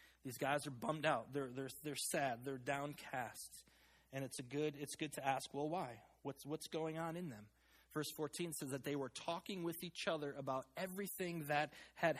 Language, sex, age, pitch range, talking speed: English, male, 20-39, 160-235 Hz, 230 wpm